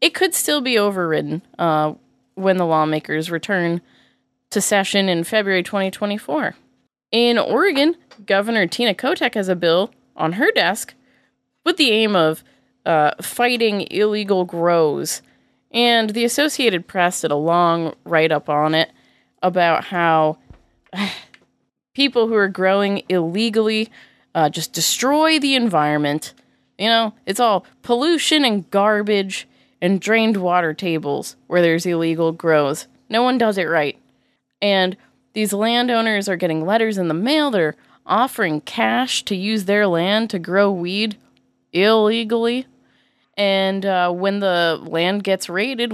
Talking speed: 135 wpm